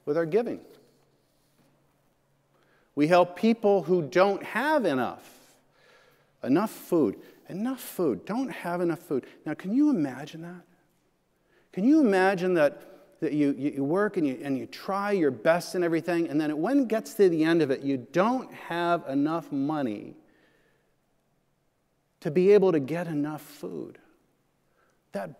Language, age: English, 50-69